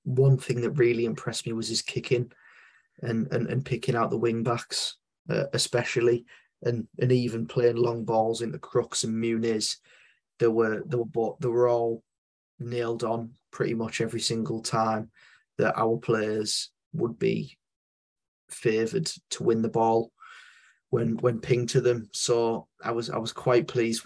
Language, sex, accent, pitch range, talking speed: English, male, British, 110-120 Hz, 165 wpm